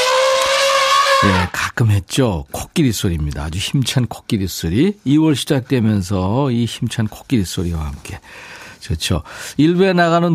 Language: Korean